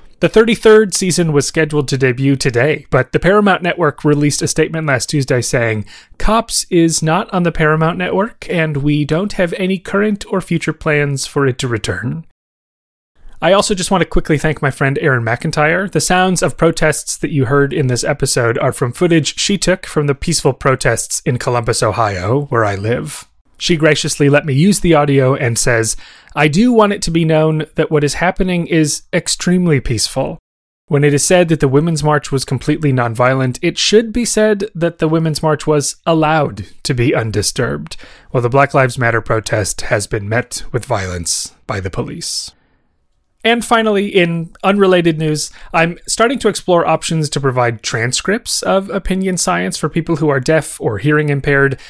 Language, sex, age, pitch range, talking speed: English, male, 30-49, 130-170 Hz, 185 wpm